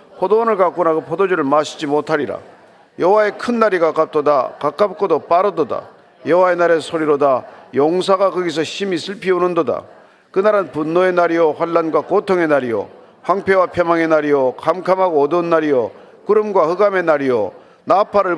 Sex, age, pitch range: male, 40-59, 155-190 Hz